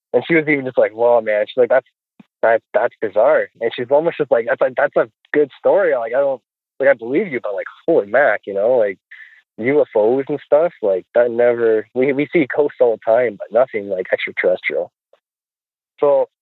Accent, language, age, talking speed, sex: American, English, 20-39, 210 wpm, male